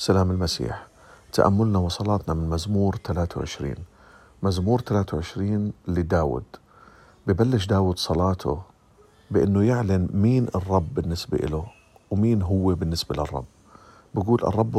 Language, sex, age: Arabic, male, 50-69